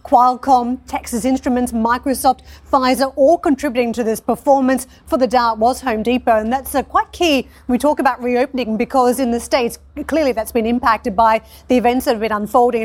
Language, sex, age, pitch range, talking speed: English, female, 40-59, 225-260 Hz, 185 wpm